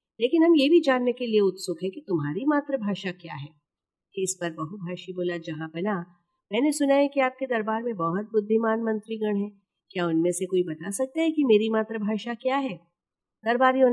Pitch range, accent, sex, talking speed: 180-230 Hz, native, female, 190 wpm